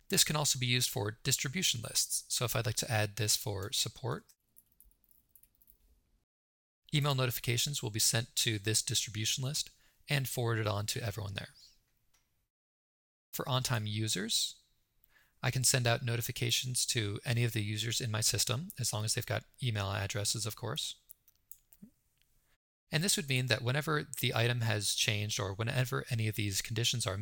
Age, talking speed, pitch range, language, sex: 20-39, 165 wpm, 105-130 Hz, English, male